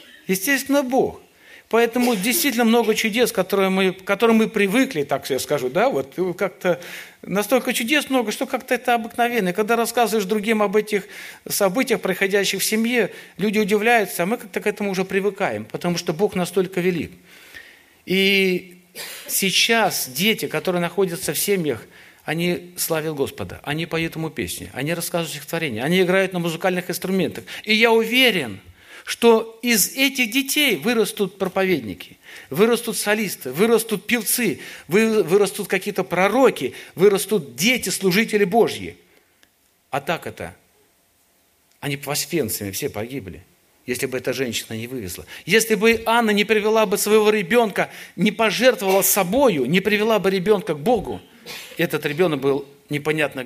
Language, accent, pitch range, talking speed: Russian, native, 155-225 Hz, 140 wpm